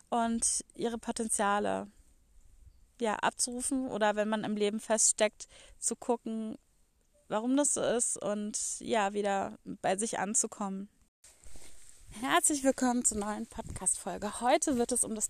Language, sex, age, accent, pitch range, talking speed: German, female, 20-39, German, 215-250 Hz, 125 wpm